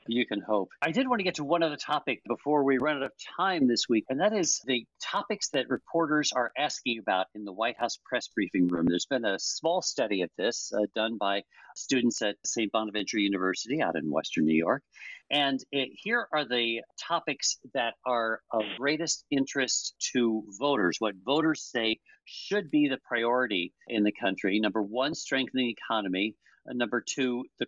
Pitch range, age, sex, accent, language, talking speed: 110-145 Hz, 50-69, male, American, English, 190 wpm